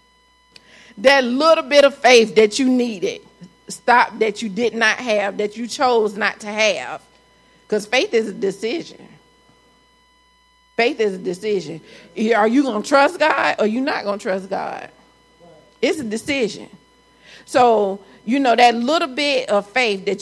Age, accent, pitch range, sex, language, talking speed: 40-59, American, 200-250 Hz, female, English, 165 wpm